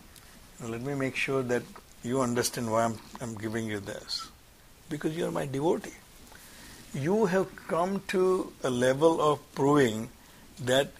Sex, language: male, English